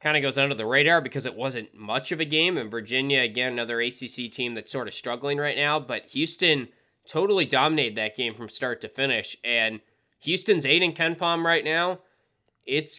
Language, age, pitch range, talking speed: English, 20-39, 120-150 Hz, 205 wpm